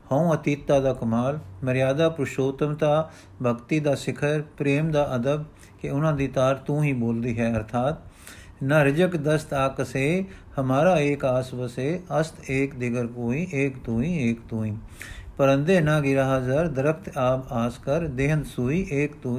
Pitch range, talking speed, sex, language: 125-150 Hz, 150 wpm, male, Punjabi